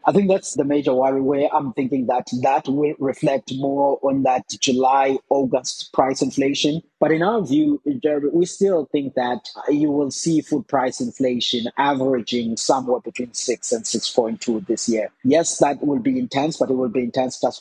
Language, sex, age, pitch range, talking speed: English, male, 30-49, 120-145 Hz, 175 wpm